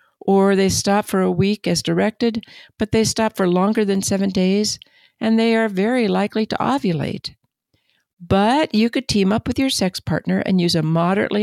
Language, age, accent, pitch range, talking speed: English, 60-79, American, 165-220 Hz, 190 wpm